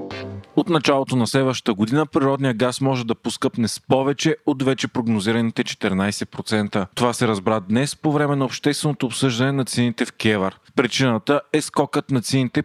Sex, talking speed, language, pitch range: male, 160 wpm, Bulgarian, 115-140 Hz